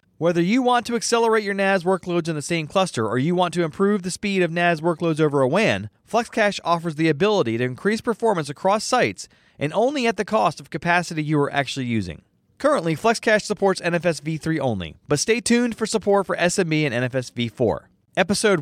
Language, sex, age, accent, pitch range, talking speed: English, male, 30-49, American, 140-205 Hz, 200 wpm